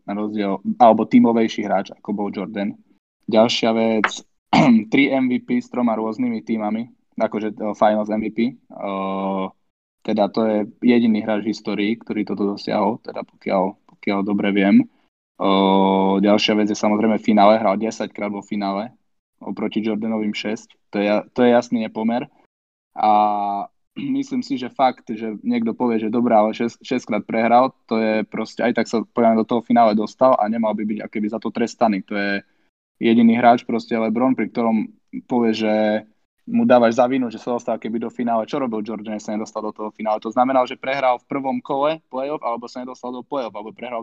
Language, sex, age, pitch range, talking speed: Slovak, male, 20-39, 105-125 Hz, 175 wpm